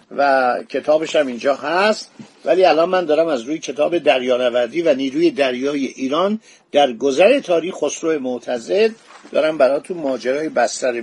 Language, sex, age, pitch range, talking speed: Persian, male, 50-69, 145-215 Hz, 145 wpm